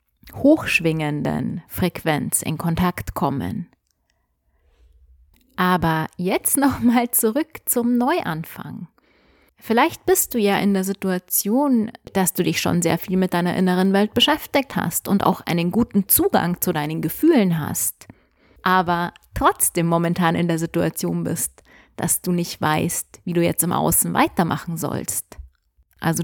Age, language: 30-49, German